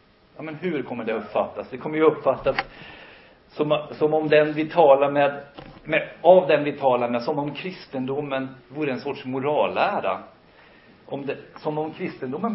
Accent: native